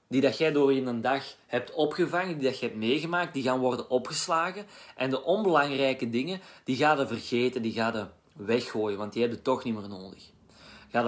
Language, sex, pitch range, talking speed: Dutch, male, 115-150 Hz, 210 wpm